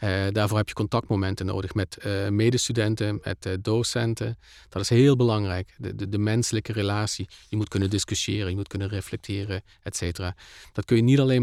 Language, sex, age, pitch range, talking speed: Dutch, male, 40-59, 95-115 Hz, 190 wpm